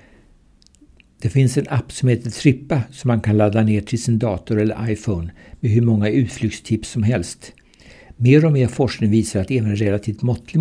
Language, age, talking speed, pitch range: Swedish, 60-79, 185 wpm, 105-125 Hz